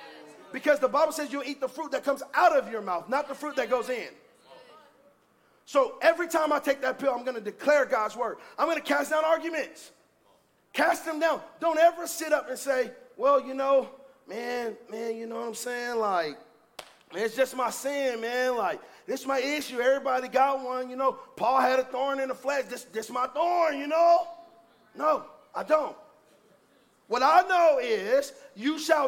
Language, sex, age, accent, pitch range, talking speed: English, male, 40-59, American, 255-320 Hz, 200 wpm